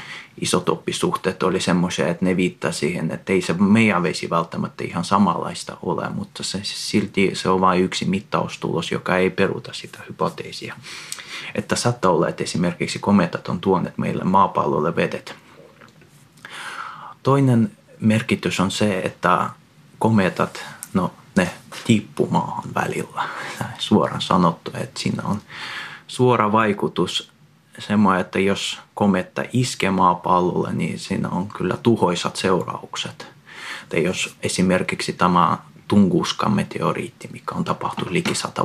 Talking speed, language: 120 wpm, Finnish